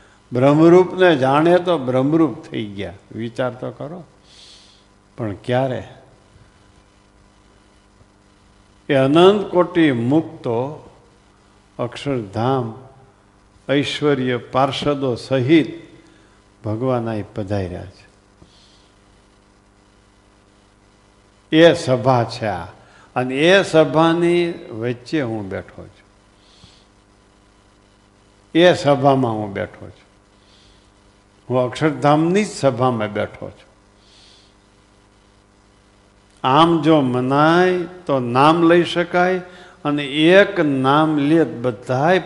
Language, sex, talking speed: Gujarati, male, 80 wpm